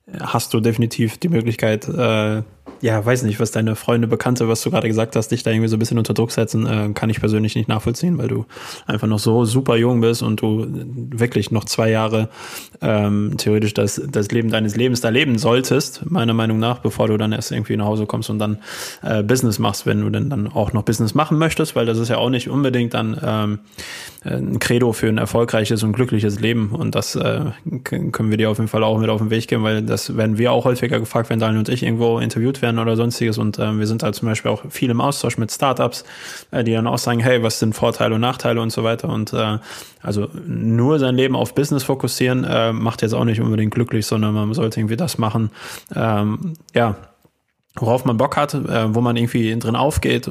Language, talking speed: German, 230 wpm